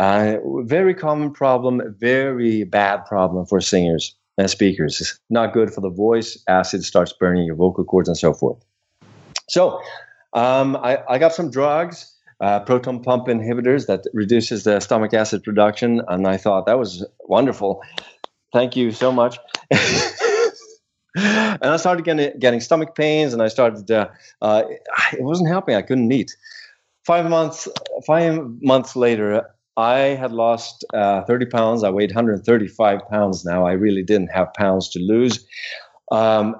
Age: 30-49